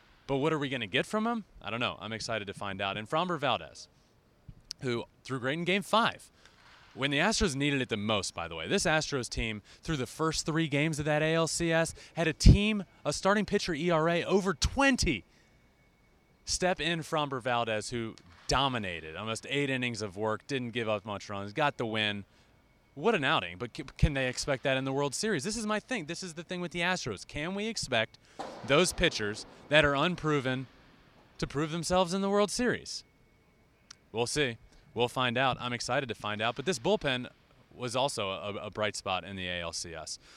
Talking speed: 200 wpm